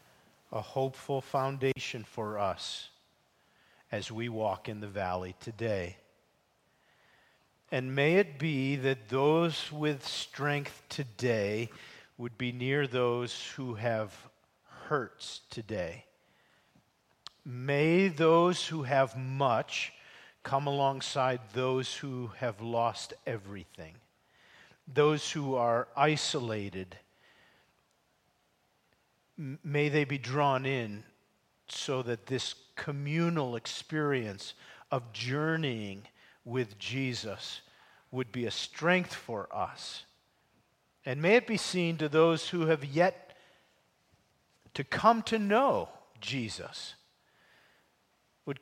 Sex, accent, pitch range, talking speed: male, American, 120-155 Hz, 100 wpm